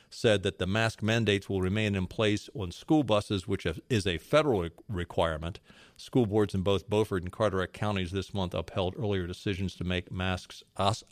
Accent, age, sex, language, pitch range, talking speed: American, 50-69, male, English, 95-115 Hz, 180 wpm